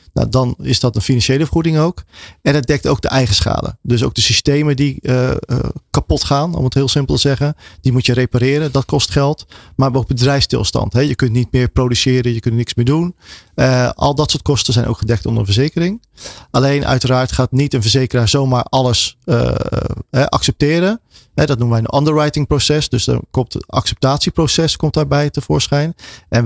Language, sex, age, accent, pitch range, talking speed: Dutch, male, 40-59, Dutch, 120-145 Hz, 195 wpm